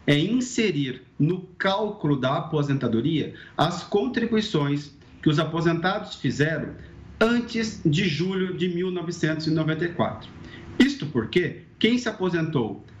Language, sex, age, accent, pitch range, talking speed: Portuguese, male, 40-59, Brazilian, 140-200 Hz, 100 wpm